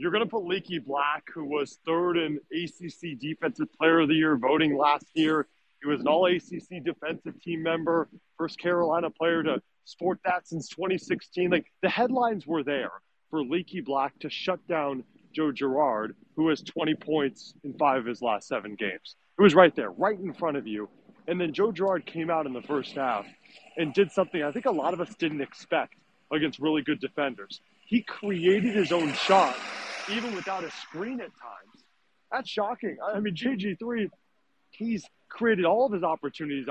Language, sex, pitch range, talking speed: English, male, 150-190 Hz, 185 wpm